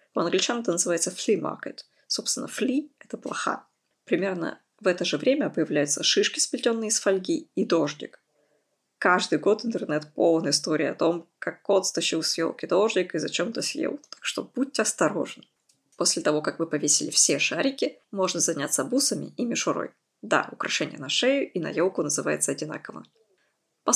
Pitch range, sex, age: 170-275 Hz, female, 20-39